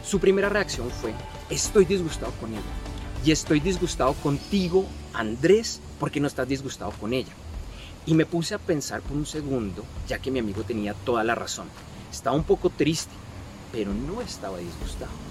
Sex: male